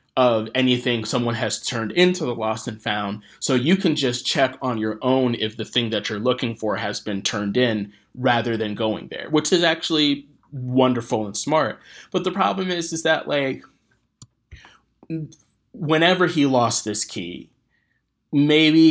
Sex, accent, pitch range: male, American, 110-145 Hz